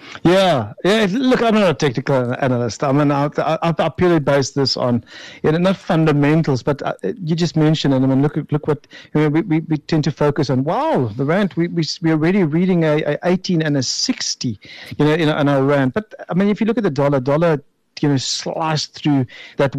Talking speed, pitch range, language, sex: 220 wpm, 130-160 Hz, English, male